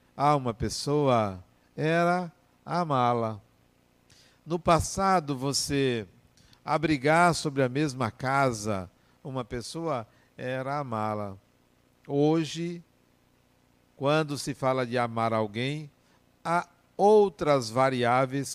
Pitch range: 115-150 Hz